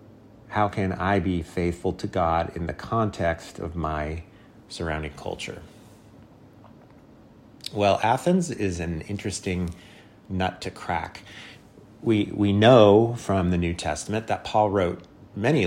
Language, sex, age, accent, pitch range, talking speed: English, male, 30-49, American, 85-105 Hz, 125 wpm